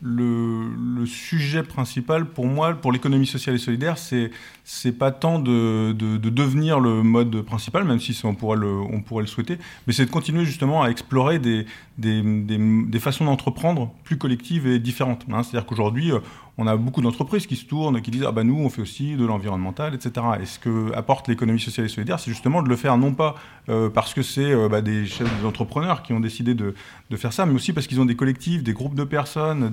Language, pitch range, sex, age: French, 115-135 Hz, male, 30-49